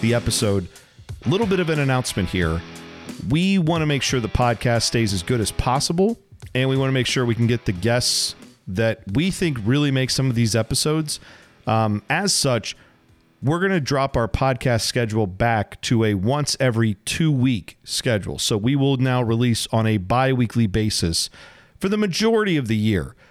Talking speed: 185 wpm